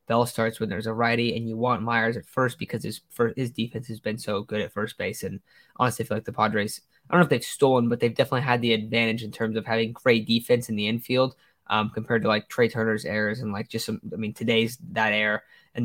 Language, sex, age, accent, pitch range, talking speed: English, male, 10-29, American, 110-125 Hz, 260 wpm